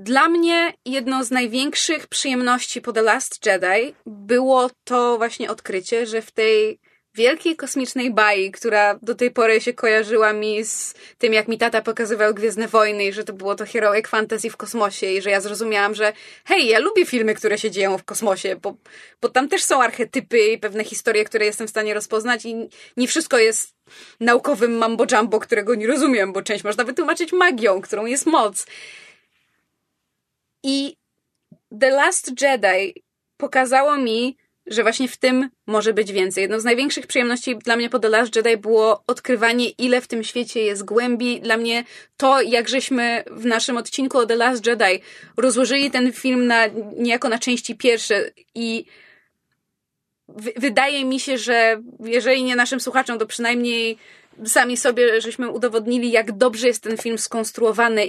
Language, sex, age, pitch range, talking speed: Polish, female, 20-39, 220-255 Hz, 165 wpm